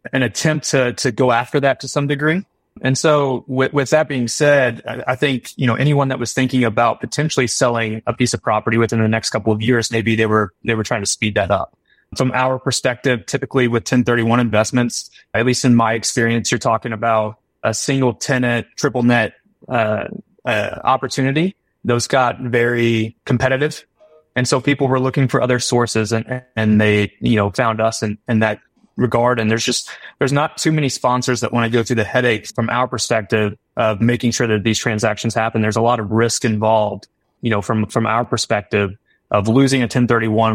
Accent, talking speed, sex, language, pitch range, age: American, 200 wpm, male, English, 110-130 Hz, 20-39